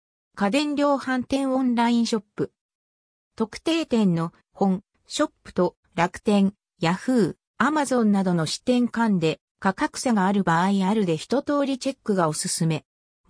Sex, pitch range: female, 180-265 Hz